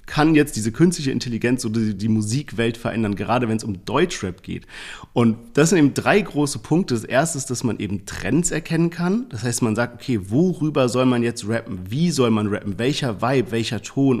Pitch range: 115-145 Hz